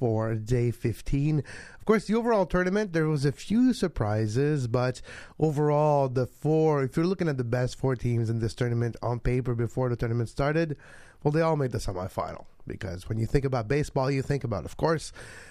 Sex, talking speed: male, 195 wpm